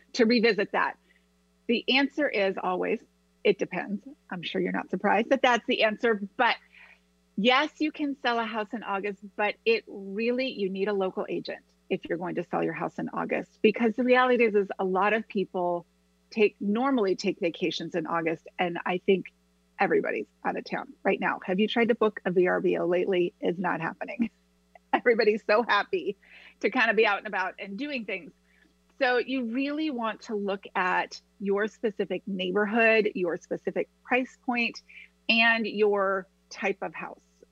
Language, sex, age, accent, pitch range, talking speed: English, female, 30-49, American, 185-235 Hz, 180 wpm